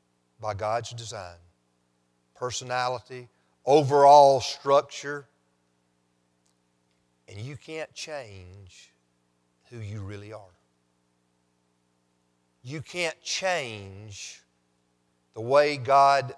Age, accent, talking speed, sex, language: 50-69, American, 75 wpm, male, English